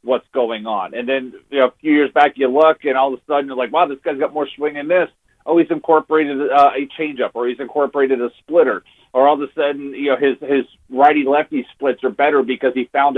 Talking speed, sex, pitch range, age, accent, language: 255 wpm, male, 130-150 Hz, 40-59, American, English